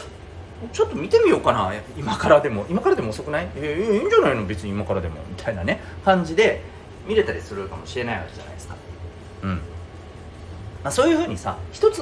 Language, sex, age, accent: Japanese, male, 40-59, native